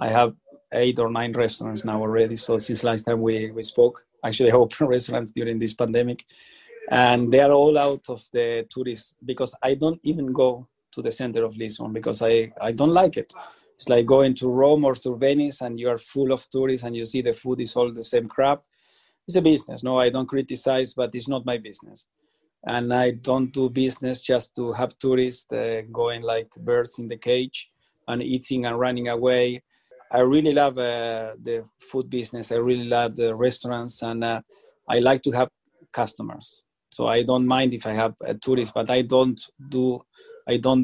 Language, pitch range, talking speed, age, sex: English, 115-130 Hz, 200 wpm, 30-49, male